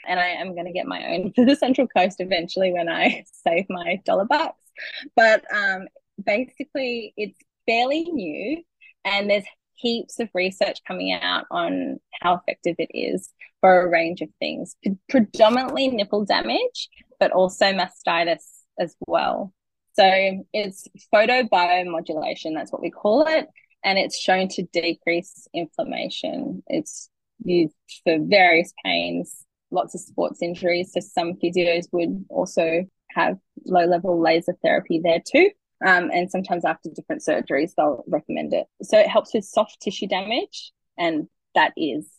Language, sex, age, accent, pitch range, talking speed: English, female, 20-39, Australian, 175-275 Hz, 145 wpm